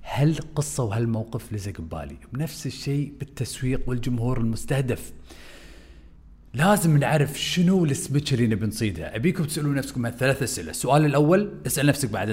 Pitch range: 115-155 Hz